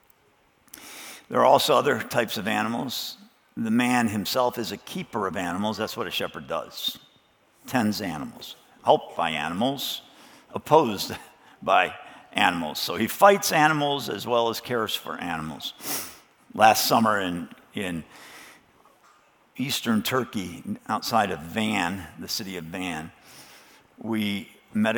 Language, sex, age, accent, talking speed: English, male, 50-69, American, 125 wpm